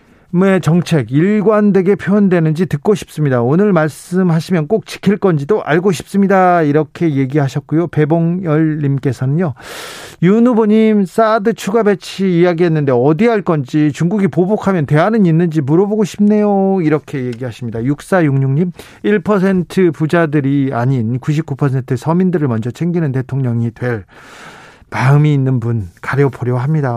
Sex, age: male, 40-59